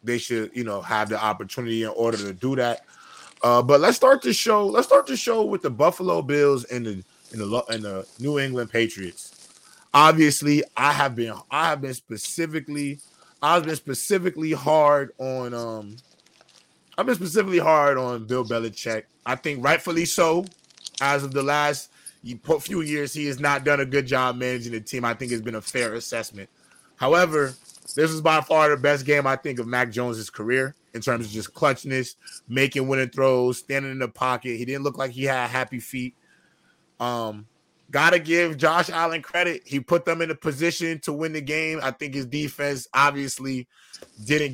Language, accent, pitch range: English, American, 120-155 Hz